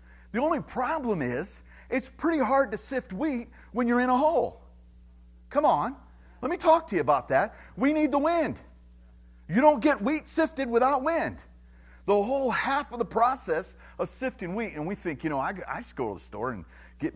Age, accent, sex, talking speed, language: 40-59, American, male, 205 wpm, English